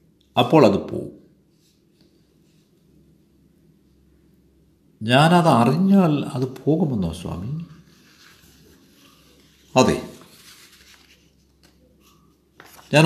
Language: Malayalam